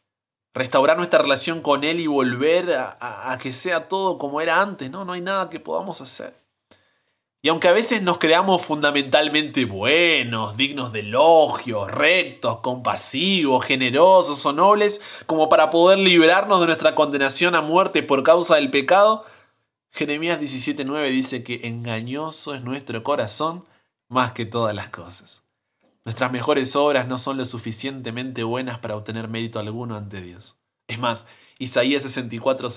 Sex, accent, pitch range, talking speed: male, Argentinian, 115-150 Hz, 150 wpm